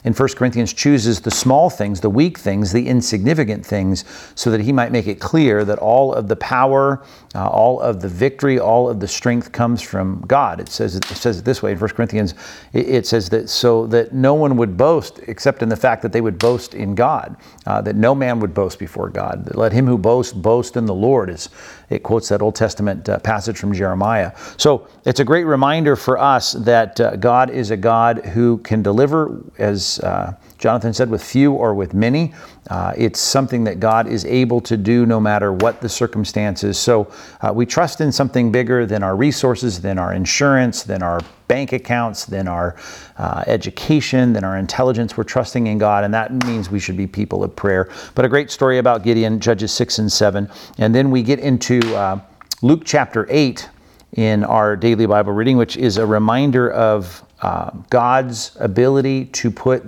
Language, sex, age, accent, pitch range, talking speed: English, male, 50-69, American, 105-130 Hz, 205 wpm